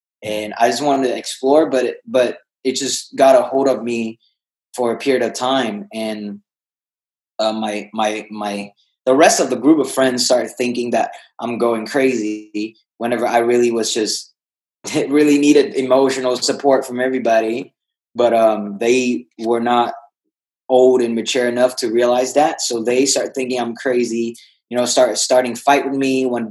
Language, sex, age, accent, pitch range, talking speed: English, male, 20-39, American, 115-135 Hz, 170 wpm